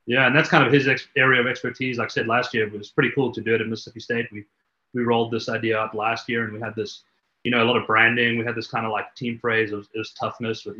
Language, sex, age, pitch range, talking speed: English, male, 30-49, 105-120 Hz, 305 wpm